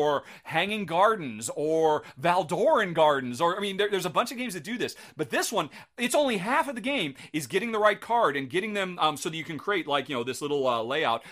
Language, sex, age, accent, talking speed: English, male, 40-59, American, 250 wpm